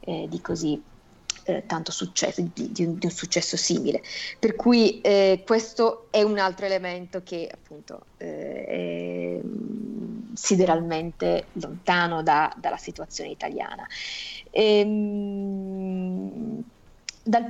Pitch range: 180-225 Hz